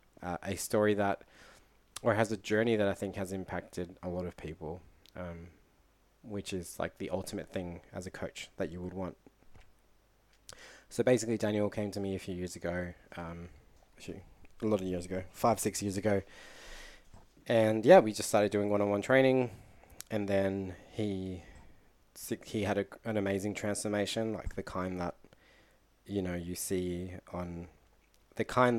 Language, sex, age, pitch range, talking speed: English, male, 20-39, 90-105 Hz, 165 wpm